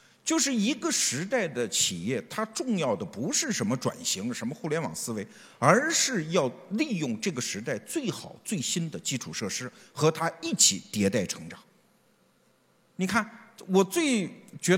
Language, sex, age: Chinese, male, 50-69